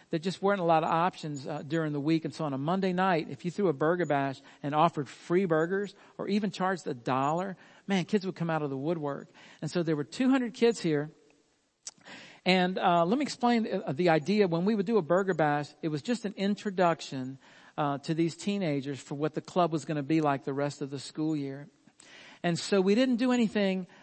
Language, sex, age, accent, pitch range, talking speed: English, male, 50-69, American, 155-190 Hz, 225 wpm